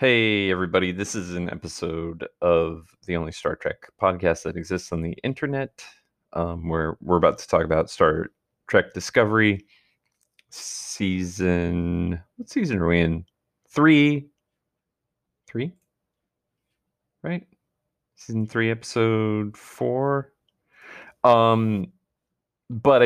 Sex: male